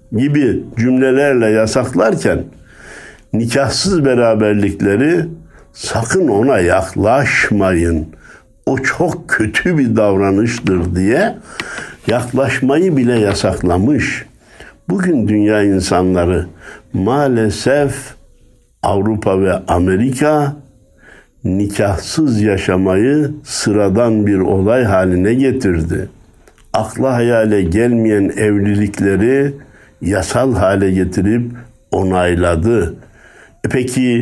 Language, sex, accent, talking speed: Turkish, male, native, 70 wpm